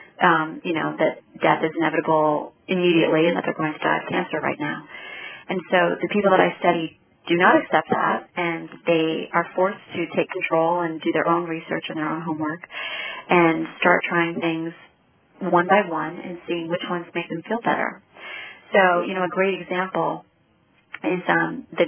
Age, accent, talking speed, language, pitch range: 30-49, American, 190 wpm, English, 165-185 Hz